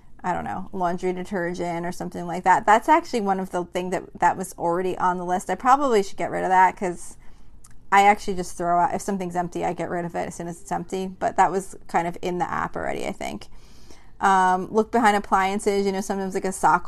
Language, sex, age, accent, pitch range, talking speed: English, female, 20-39, American, 180-200 Hz, 245 wpm